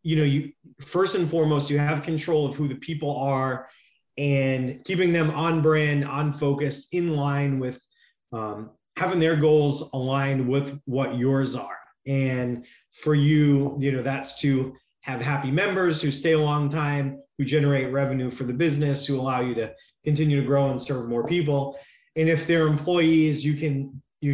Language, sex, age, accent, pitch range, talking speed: English, male, 30-49, American, 135-155 Hz, 180 wpm